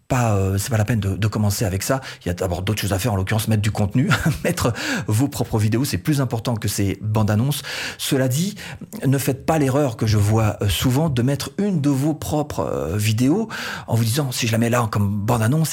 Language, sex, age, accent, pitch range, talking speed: French, male, 40-59, French, 110-145 Hz, 235 wpm